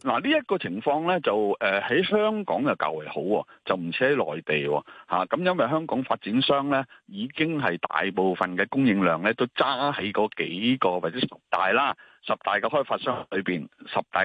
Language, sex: Chinese, male